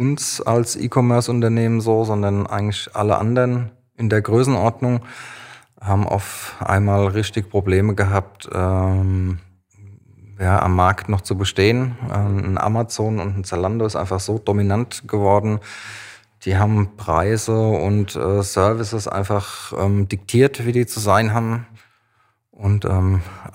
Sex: male